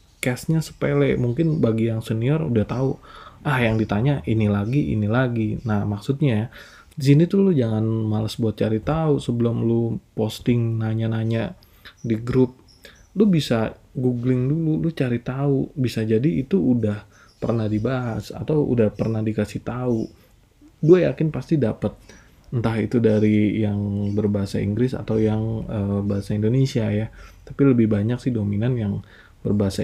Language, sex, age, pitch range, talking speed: Indonesian, male, 20-39, 110-135 Hz, 150 wpm